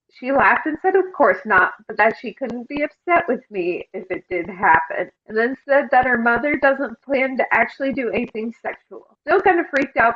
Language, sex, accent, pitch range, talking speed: English, female, American, 220-275 Hz, 220 wpm